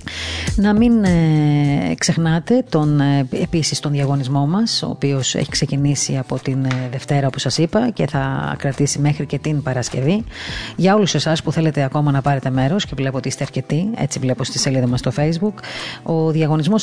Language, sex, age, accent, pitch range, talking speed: Greek, female, 30-49, native, 135-170 Hz, 170 wpm